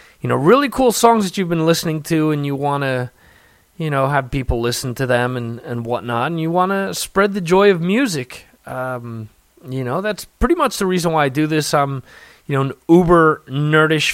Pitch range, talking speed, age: 125-165 Hz, 210 wpm, 30-49